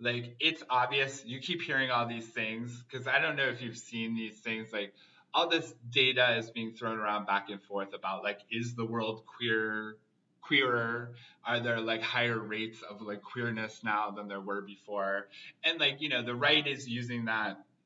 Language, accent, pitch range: English, American, 105-125 Hz